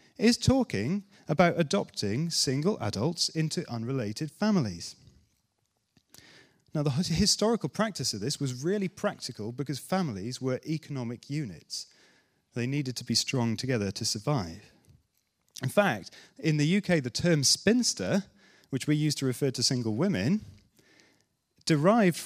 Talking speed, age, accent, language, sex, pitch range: 130 wpm, 30-49, British, English, male, 115-165 Hz